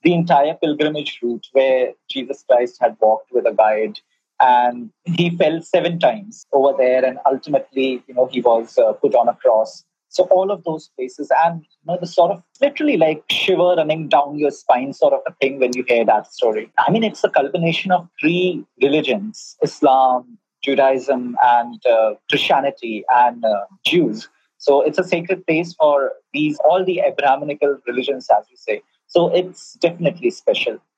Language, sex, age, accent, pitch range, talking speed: English, male, 30-49, Indian, 130-180 Hz, 175 wpm